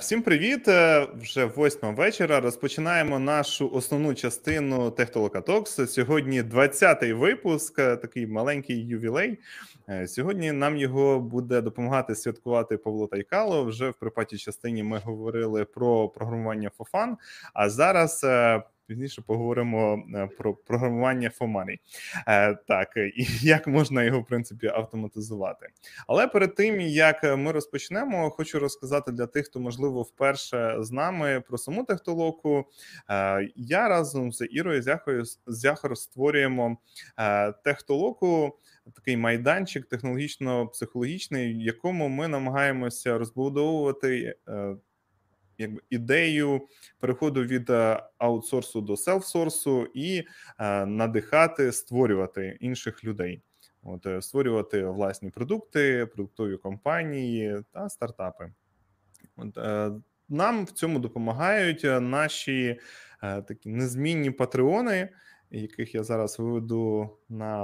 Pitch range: 110-145 Hz